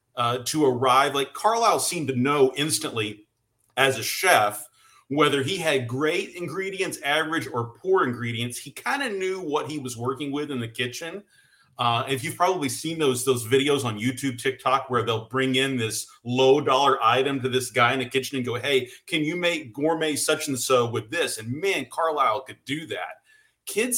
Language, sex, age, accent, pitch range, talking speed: English, male, 40-59, American, 120-150 Hz, 195 wpm